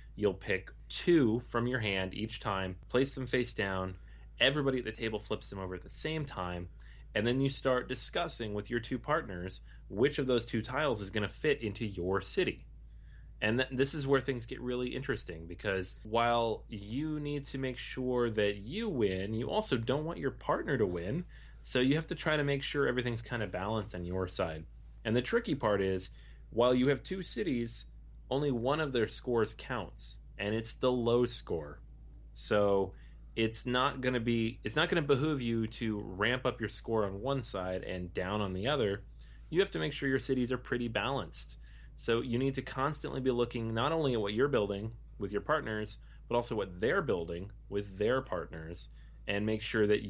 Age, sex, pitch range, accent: 30-49, male, 95-130 Hz, American